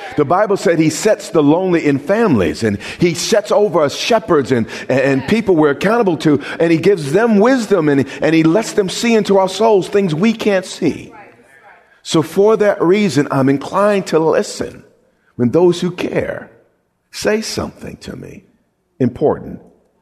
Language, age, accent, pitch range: English, 50-69, American, 125-190 Hz